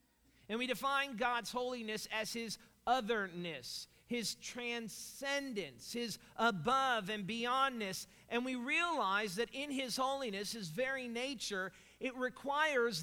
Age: 40-59